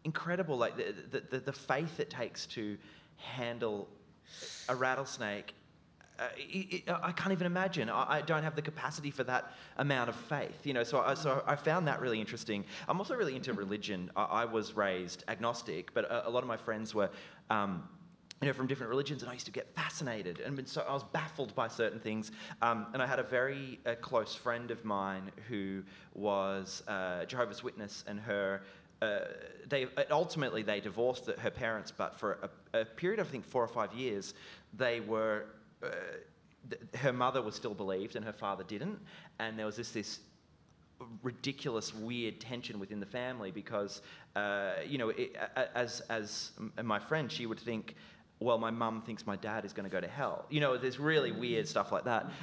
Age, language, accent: 30-49, English, Australian